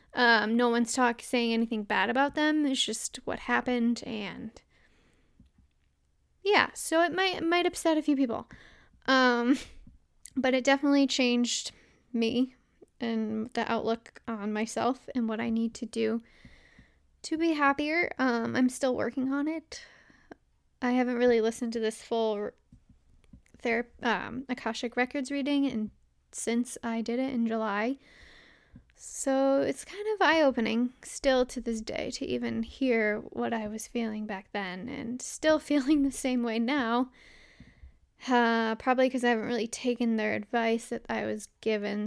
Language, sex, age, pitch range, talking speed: English, female, 10-29, 225-265 Hz, 155 wpm